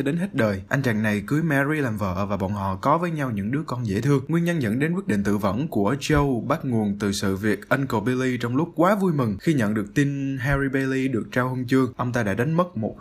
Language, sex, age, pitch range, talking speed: Vietnamese, male, 20-39, 105-145 Hz, 270 wpm